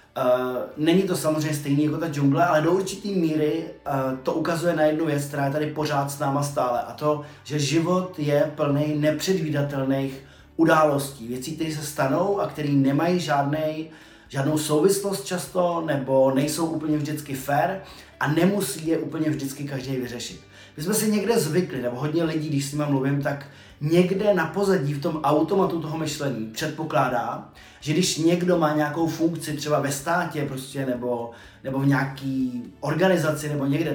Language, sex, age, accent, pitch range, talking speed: Czech, male, 30-49, native, 140-165 Hz, 170 wpm